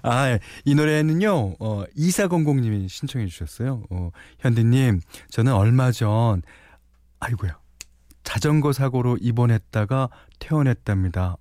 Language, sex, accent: Korean, male, native